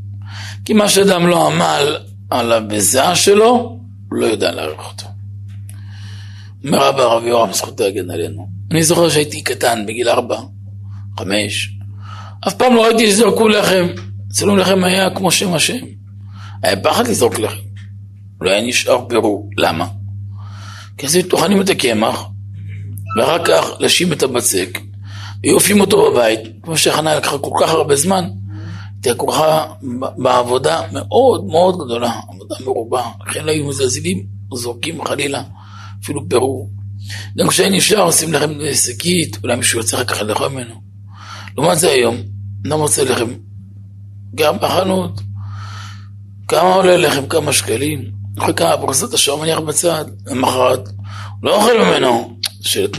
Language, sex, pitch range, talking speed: Hebrew, male, 100-135 Hz, 130 wpm